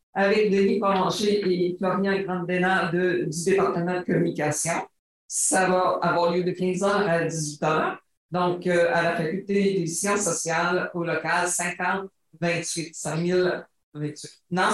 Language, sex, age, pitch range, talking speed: French, female, 50-69, 175-205 Hz, 135 wpm